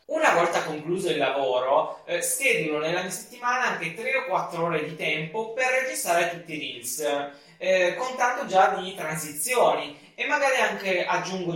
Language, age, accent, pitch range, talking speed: Italian, 20-39, native, 140-205 Hz, 160 wpm